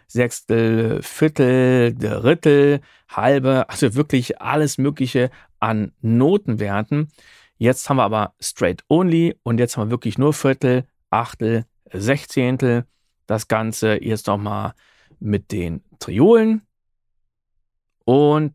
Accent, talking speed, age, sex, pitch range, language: German, 105 wpm, 40-59, male, 105-145 Hz, German